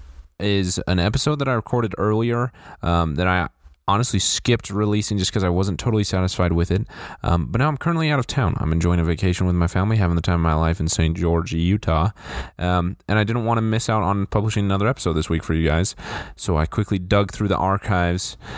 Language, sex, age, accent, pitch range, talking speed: English, male, 20-39, American, 85-110 Hz, 225 wpm